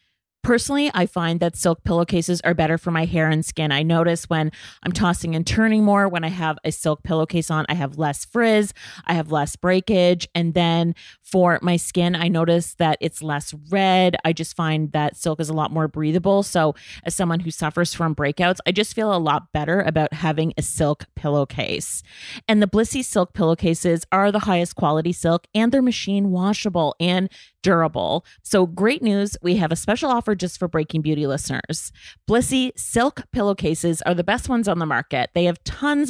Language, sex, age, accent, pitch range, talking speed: English, female, 30-49, American, 160-200 Hz, 195 wpm